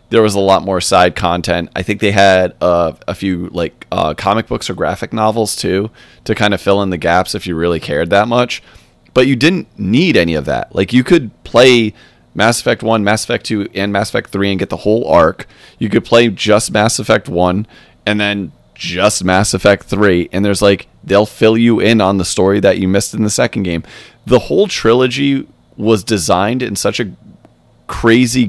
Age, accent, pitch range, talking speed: 30-49, American, 95-115 Hz, 210 wpm